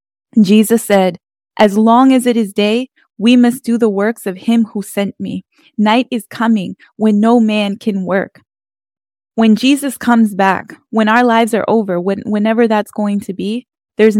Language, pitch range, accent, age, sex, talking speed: English, 200-235 Hz, American, 10-29, female, 175 wpm